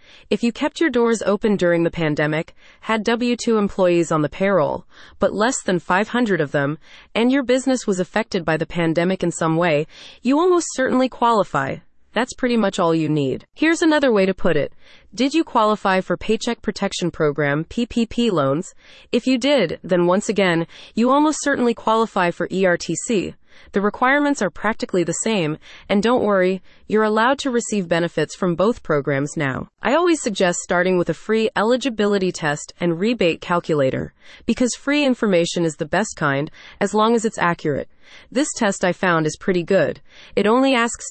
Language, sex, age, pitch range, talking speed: English, female, 30-49, 170-235 Hz, 175 wpm